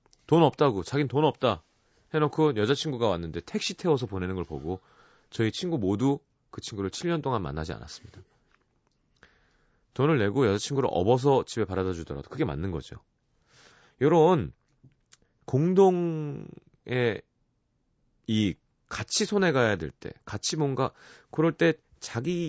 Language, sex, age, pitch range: Korean, male, 30-49, 105-155 Hz